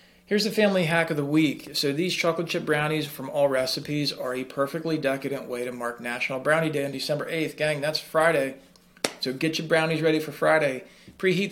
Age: 40-59